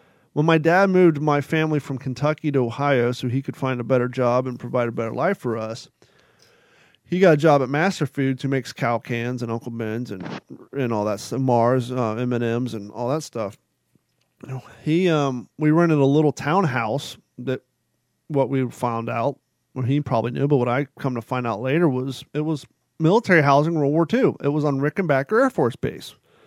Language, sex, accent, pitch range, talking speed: English, male, American, 125-150 Hz, 200 wpm